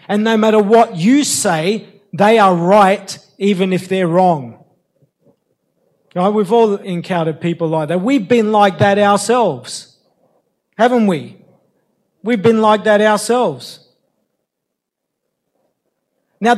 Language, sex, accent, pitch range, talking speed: English, male, Australian, 195-230 Hz, 115 wpm